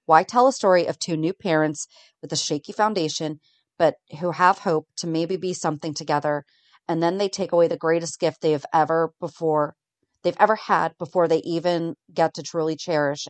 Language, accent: English, American